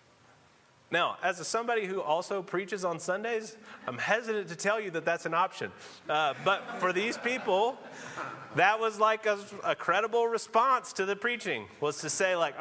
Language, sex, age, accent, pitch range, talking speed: English, male, 30-49, American, 185-250 Hz, 170 wpm